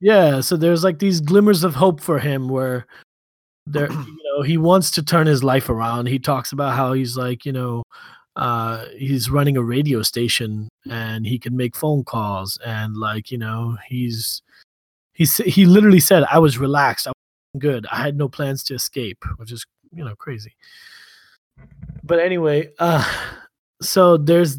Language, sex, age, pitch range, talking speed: English, male, 20-39, 120-150 Hz, 175 wpm